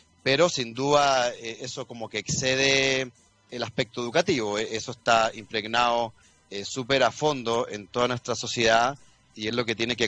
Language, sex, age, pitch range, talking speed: Spanish, male, 30-49, 110-130 Hz, 160 wpm